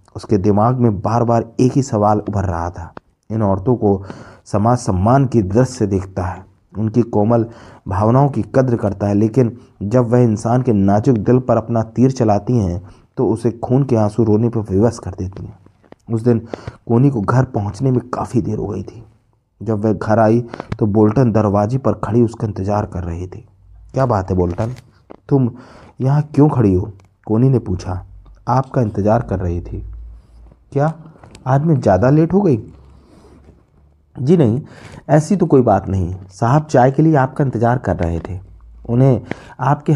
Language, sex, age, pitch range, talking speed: Hindi, male, 30-49, 100-130 Hz, 180 wpm